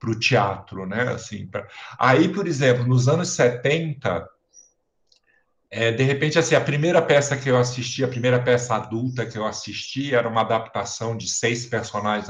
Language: Portuguese